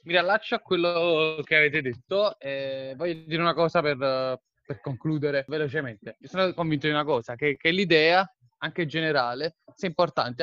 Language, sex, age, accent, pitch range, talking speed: Italian, male, 20-39, native, 140-175 Hz, 175 wpm